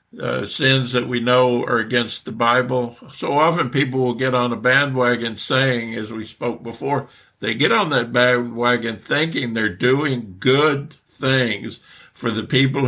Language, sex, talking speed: English, male, 165 wpm